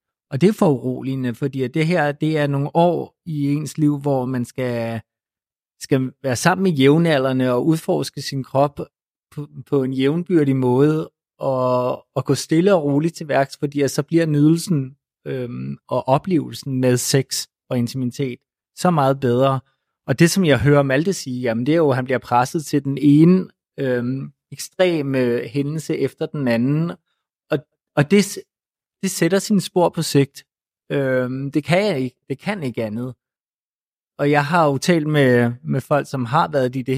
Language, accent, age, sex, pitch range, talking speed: Danish, native, 30-49, male, 130-155 Hz, 170 wpm